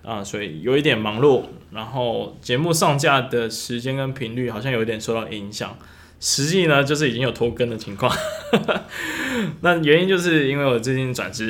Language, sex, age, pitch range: Chinese, male, 20-39, 110-135 Hz